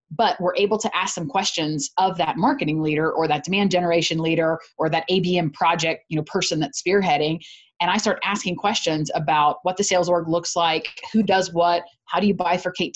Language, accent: English, American